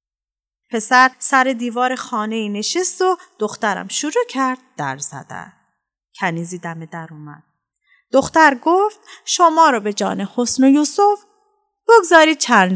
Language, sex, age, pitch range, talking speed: Persian, female, 30-49, 190-295 Hz, 125 wpm